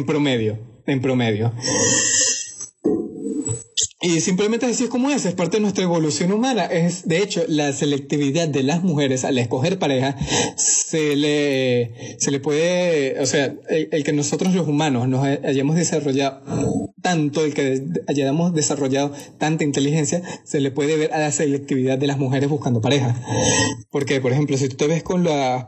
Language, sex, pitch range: Spanish, male, 140-165 Hz